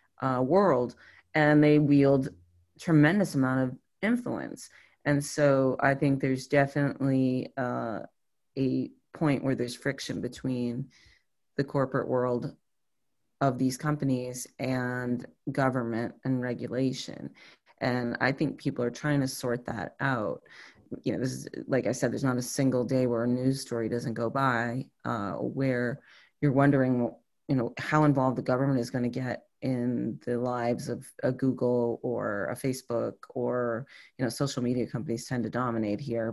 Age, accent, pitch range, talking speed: 30-49, American, 125-140 Hz, 165 wpm